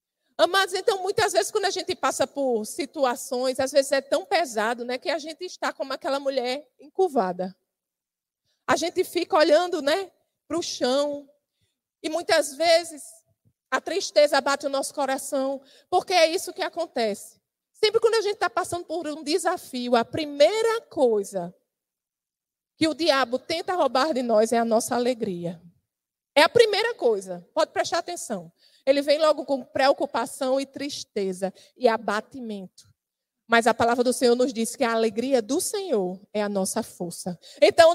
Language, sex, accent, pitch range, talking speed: Portuguese, female, Brazilian, 260-370 Hz, 160 wpm